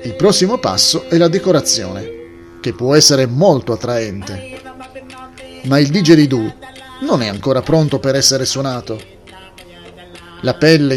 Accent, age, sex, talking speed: native, 40-59, male, 125 wpm